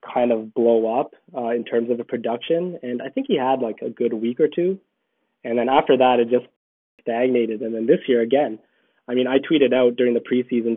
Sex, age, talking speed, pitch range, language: male, 20-39, 230 wpm, 115-125 Hz, English